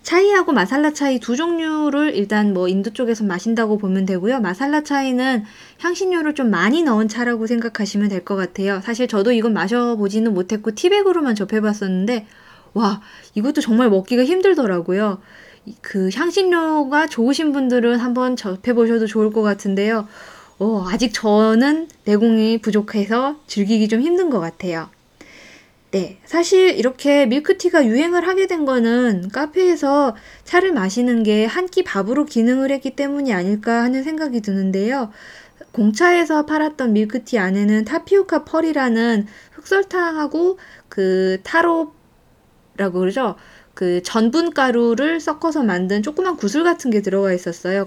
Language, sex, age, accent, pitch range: Korean, female, 20-39, native, 210-295 Hz